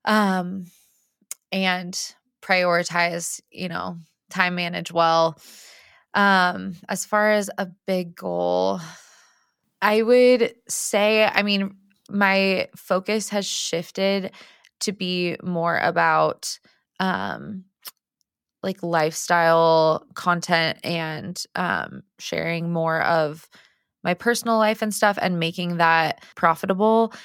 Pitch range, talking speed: 165-190 Hz, 100 wpm